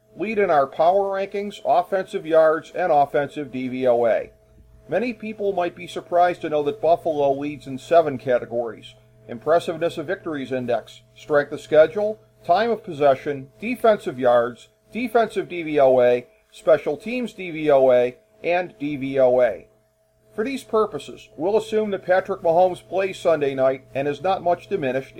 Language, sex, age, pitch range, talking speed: English, male, 40-59, 130-185 Hz, 140 wpm